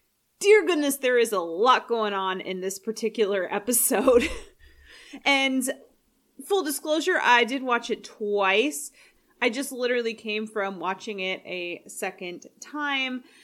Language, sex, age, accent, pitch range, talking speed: English, female, 30-49, American, 215-300 Hz, 135 wpm